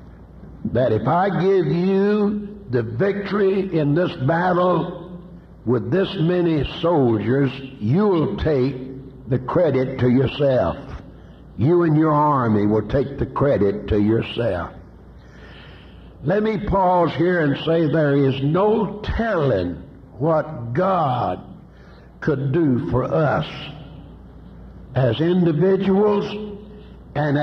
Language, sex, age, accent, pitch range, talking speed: English, male, 60-79, American, 130-185 Hz, 110 wpm